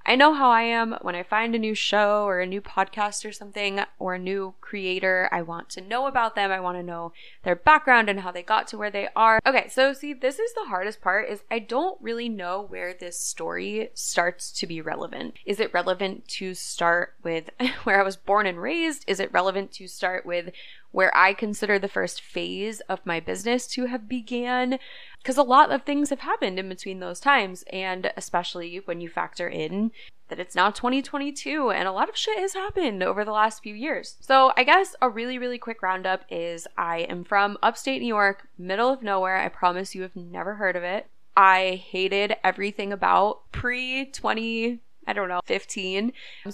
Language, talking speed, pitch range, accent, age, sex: English, 205 wpm, 180-230 Hz, American, 20-39, female